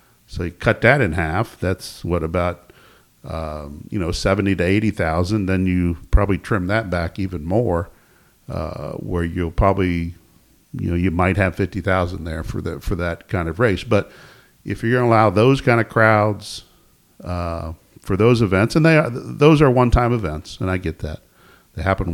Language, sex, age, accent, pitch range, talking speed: English, male, 50-69, American, 85-105 Hz, 190 wpm